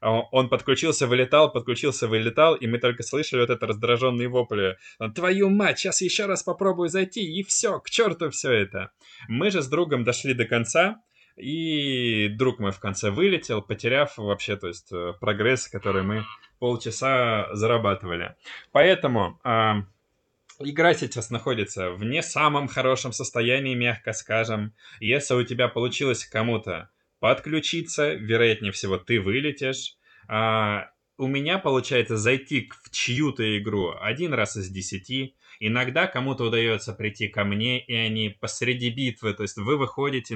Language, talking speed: Russian, 145 wpm